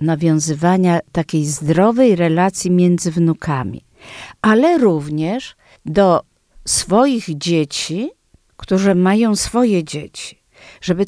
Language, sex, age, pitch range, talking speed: Polish, female, 50-69, 190-285 Hz, 85 wpm